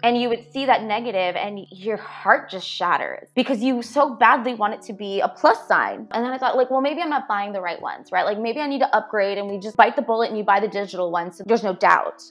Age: 20-39